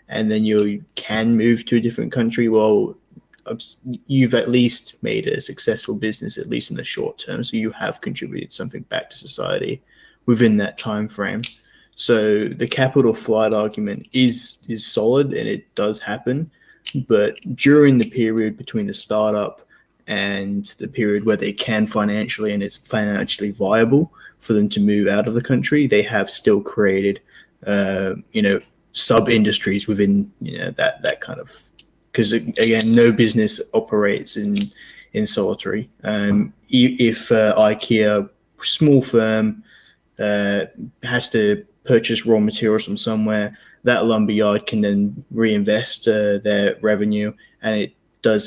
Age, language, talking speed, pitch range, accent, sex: 10-29, English, 150 wpm, 105-120 Hz, Australian, male